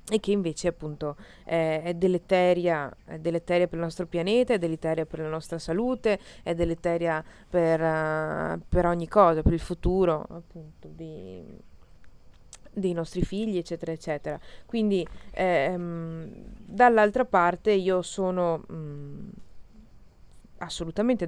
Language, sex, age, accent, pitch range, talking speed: Italian, female, 20-39, native, 165-215 Hz, 120 wpm